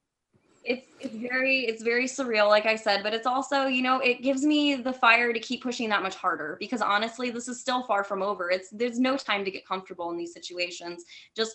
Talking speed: 230 wpm